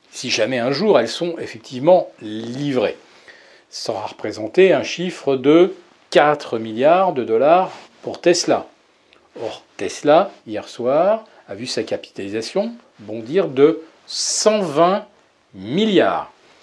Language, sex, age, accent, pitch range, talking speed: French, male, 40-59, French, 120-185 Hz, 115 wpm